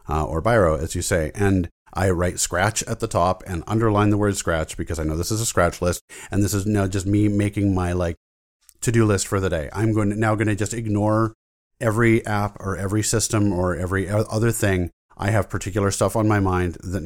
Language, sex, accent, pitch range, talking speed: English, male, American, 85-110 Hz, 230 wpm